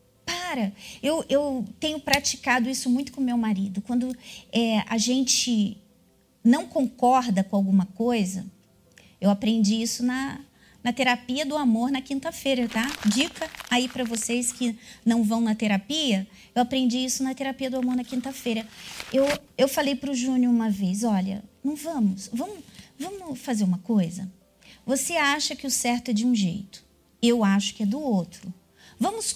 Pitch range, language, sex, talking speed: 215-290 Hz, Portuguese, female, 160 wpm